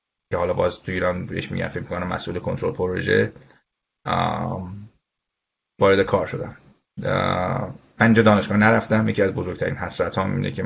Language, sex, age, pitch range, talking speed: Persian, male, 30-49, 95-110 Hz, 135 wpm